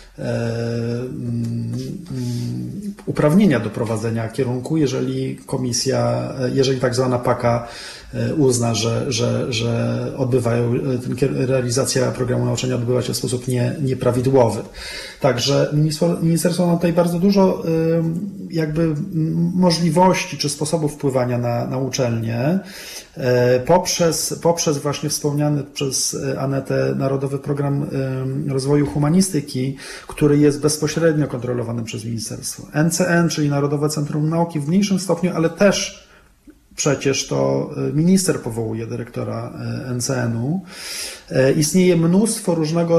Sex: male